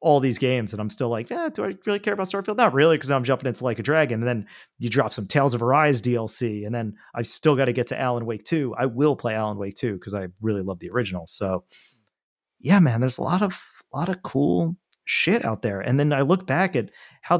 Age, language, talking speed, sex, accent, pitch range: 30-49, English, 260 wpm, male, American, 100-140 Hz